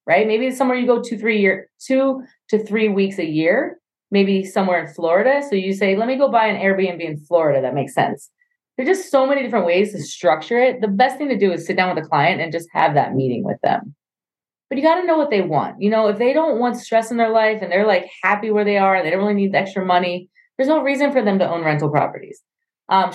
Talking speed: 270 wpm